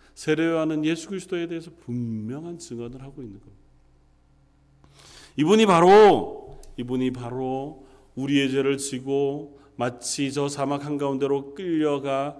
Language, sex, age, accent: Korean, male, 40-59, native